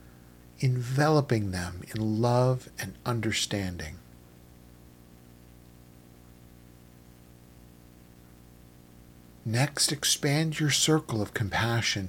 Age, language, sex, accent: 50-69, English, male, American